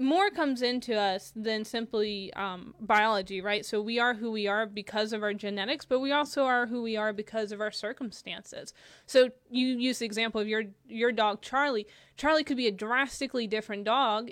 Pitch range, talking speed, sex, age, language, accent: 210-255 Hz, 195 wpm, female, 20-39, English, American